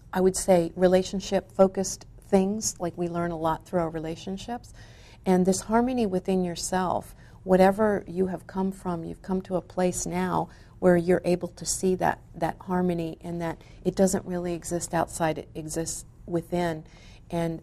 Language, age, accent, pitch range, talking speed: English, 50-69, American, 165-190 Hz, 165 wpm